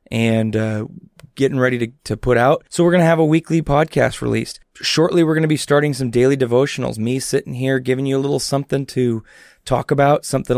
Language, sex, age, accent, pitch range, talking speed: English, male, 30-49, American, 125-155 Hz, 215 wpm